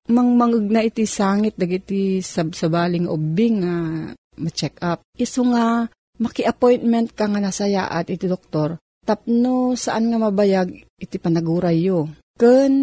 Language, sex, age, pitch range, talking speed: Filipino, female, 40-59, 170-225 Hz, 135 wpm